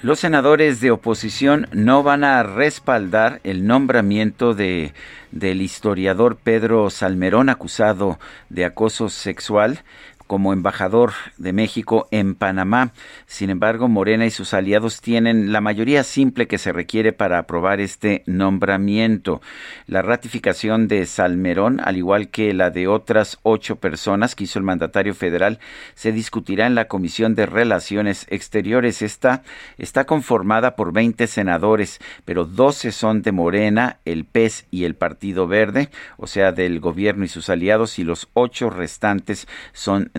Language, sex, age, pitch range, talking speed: Spanish, male, 50-69, 95-115 Hz, 145 wpm